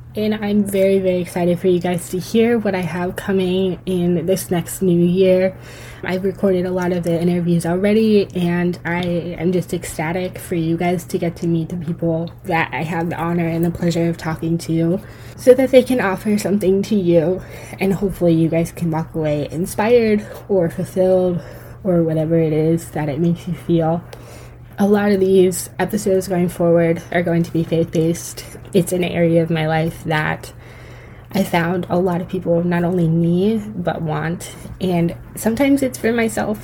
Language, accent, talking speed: English, American, 185 wpm